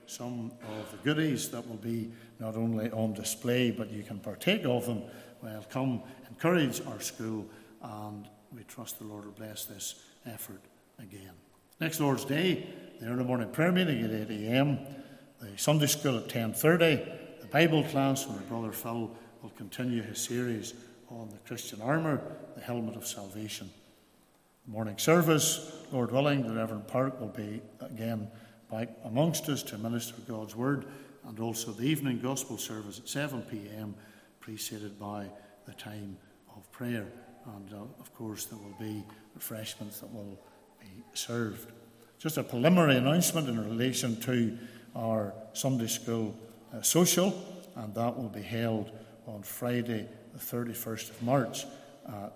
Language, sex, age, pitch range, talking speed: English, male, 60-79, 110-135 Hz, 155 wpm